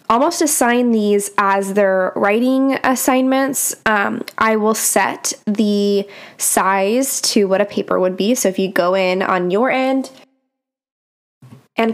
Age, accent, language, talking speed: 10-29, American, English, 140 wpm